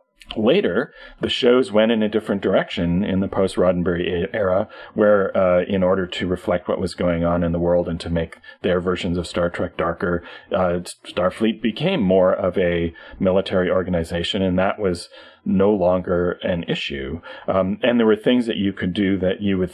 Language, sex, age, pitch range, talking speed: English, male, 40-59, 85-100 Hz, 185 wpm